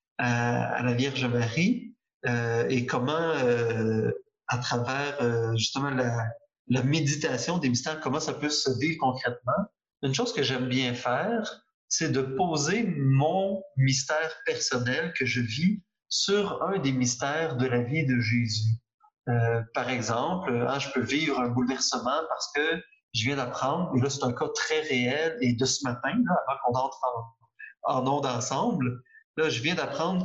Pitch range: 125-155 Hz